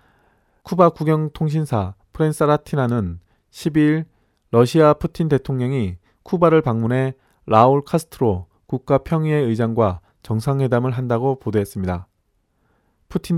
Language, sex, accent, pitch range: Korean, male, native, 110-155 Hz